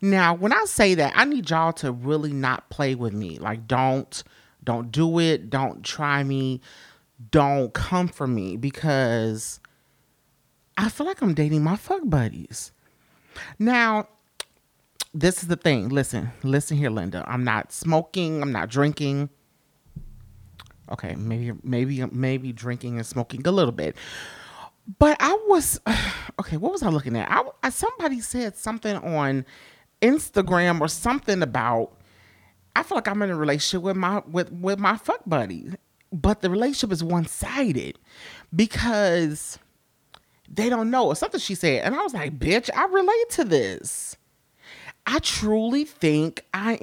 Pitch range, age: 130-200 Hz, 30-49